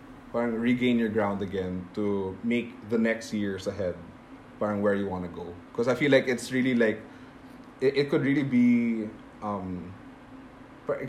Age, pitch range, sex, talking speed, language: 20-39, 95-115 Hz, male, 155 wpm, English